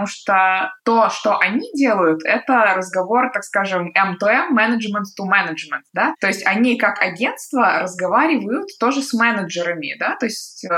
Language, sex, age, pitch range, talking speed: Russian, female, 20-39, 190-235 Hz, 150 wpm